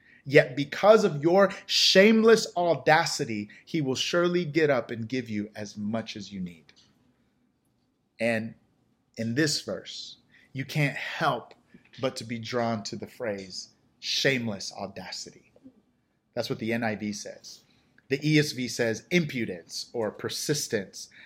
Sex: male